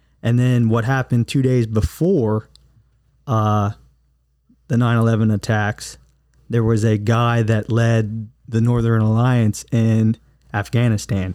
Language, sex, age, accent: English, male, 20-39, American